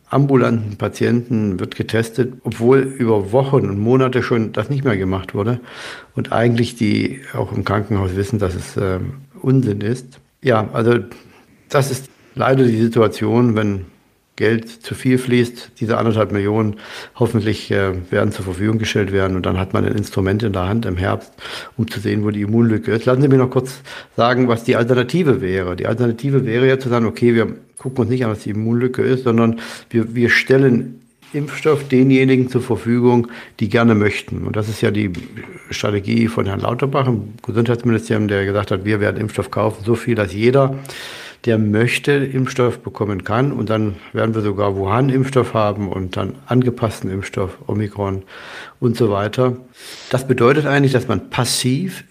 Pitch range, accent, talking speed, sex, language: 105-130 Hz, German, 175 wpm, male, German